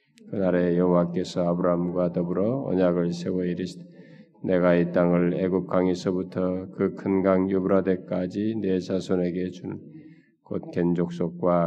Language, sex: Korean, male